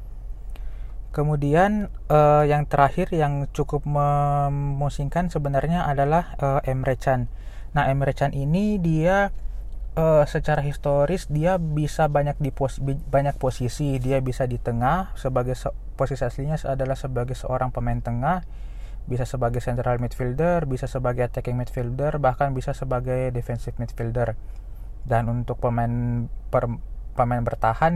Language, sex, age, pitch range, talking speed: Indonesian, male, 20-39, 120-140 Hz, 125 wpm